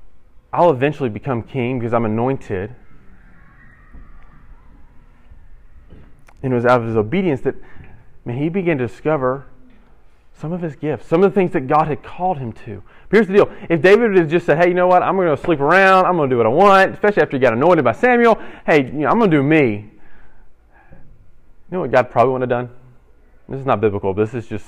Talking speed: 205 wpm